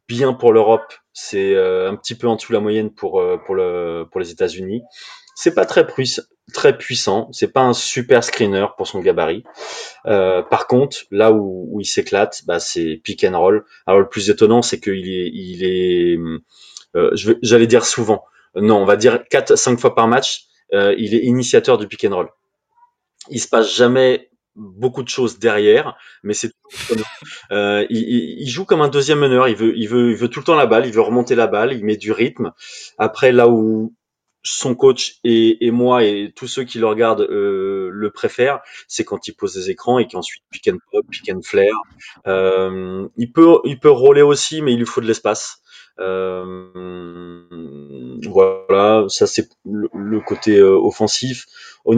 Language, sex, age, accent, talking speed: French, male, 20-39, French, 185 wpm